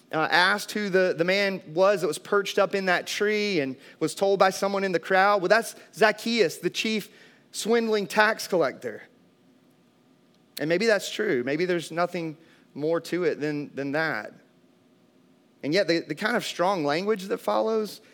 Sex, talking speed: male, 175 wpm